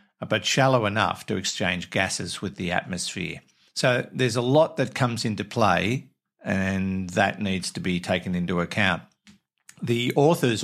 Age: 50-69